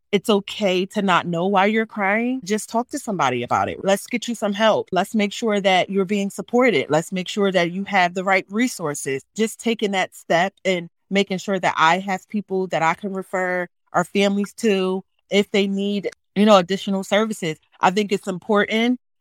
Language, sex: English, female